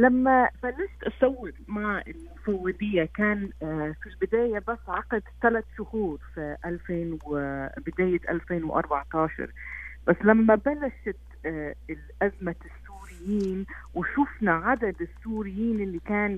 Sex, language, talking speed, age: female, Arabic, 95 wpm, 40-59